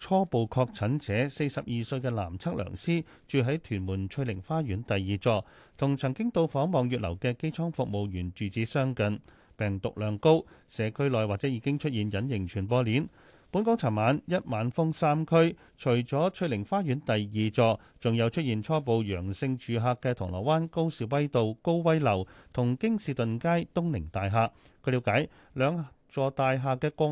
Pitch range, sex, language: 110-155 Hz, male, Chinese